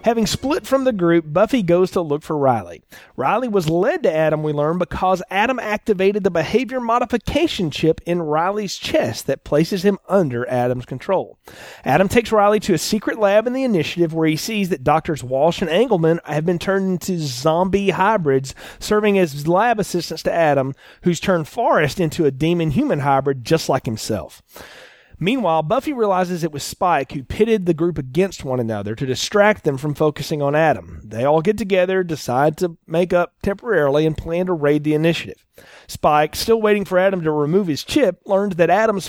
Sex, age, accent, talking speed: male, 30-49, American, 185 wpm